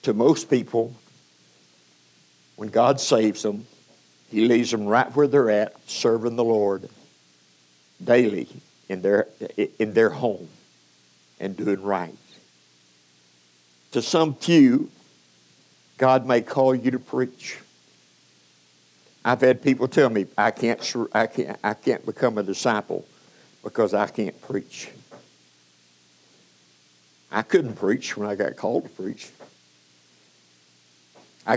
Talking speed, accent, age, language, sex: 120 wpm, American, 60-79, English, male